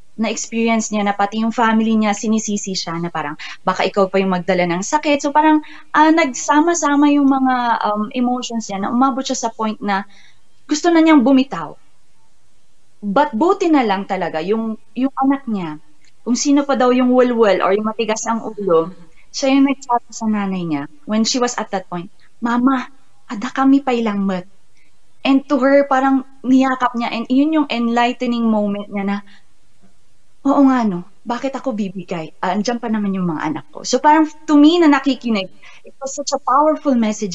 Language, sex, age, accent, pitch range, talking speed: Filipino, female, 20-39, native, 205-270 Hz, 185 wpm